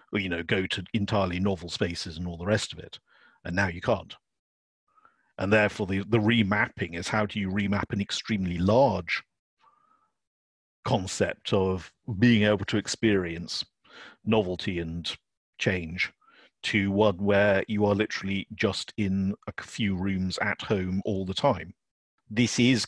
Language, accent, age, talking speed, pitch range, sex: English, British, 50-69, 150 wpm, 90-105 Hz, male